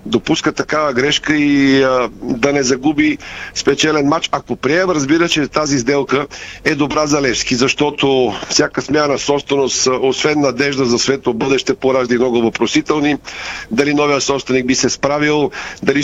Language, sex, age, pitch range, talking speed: Bulgarian, male, 50-69, 135-160 Hz, 145 wpm